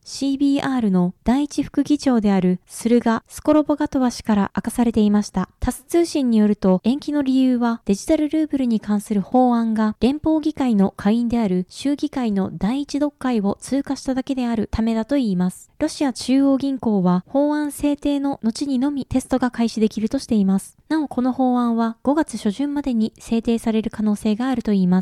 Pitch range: 205-270 Hz